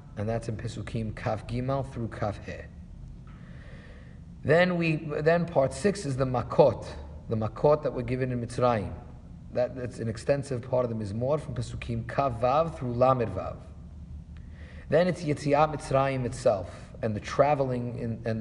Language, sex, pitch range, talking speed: English, male, 115-145 Hz, 160 wpm